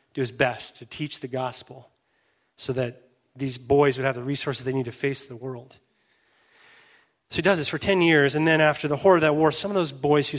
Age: 30-49